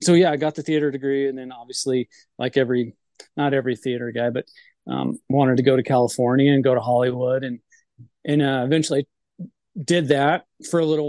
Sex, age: male, 30-49